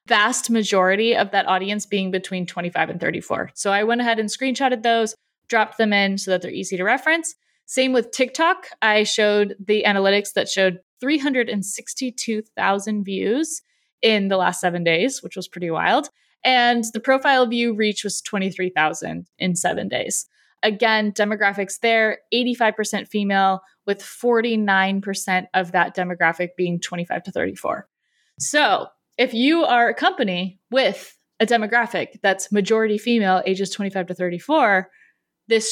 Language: English